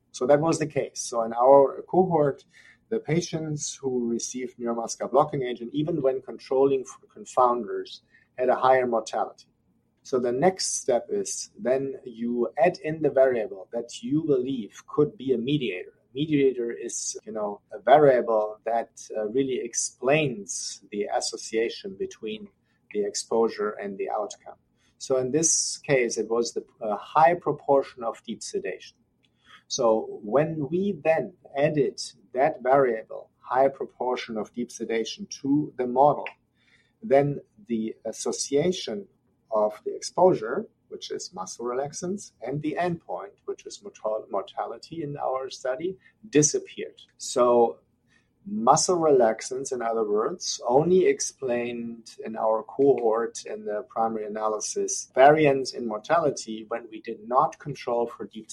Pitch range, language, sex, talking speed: 120-195 Hz, English, male, 140 wpm